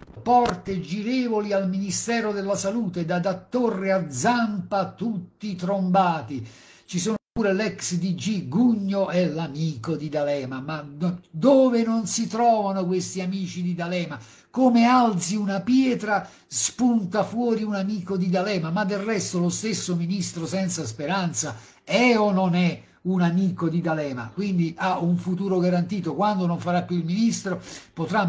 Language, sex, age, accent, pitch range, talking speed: Italian, male, 50-69, native, 170-200 Hz, 150 wpm